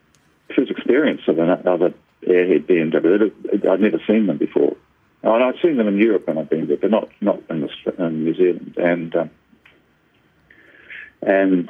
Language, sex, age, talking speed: English, male, 60-79, 175 wpm